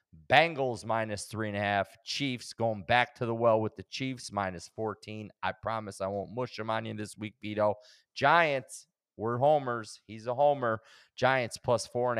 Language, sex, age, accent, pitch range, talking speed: English, male, 30-49, American, 105-120 Hz, 185 wpm